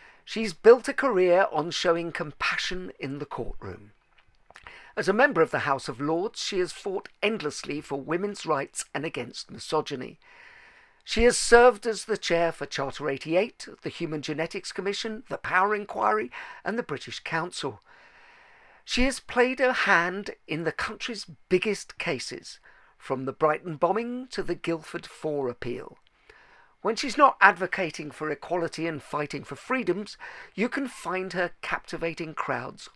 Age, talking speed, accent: 50-69, 150 wpm, British